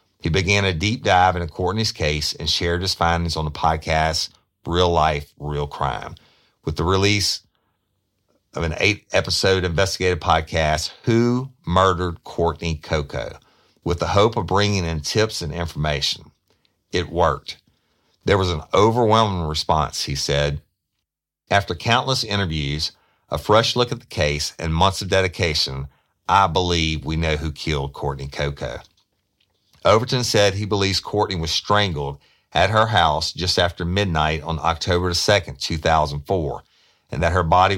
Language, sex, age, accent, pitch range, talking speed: English, male, 50-69, American, 75-100 Hz, 145 wpm